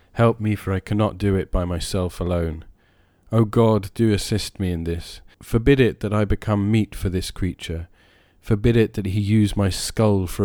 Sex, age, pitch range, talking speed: male, 40-59, 90-110 Hz, 195 wpm